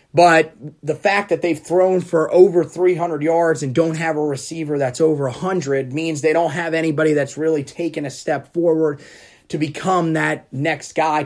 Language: English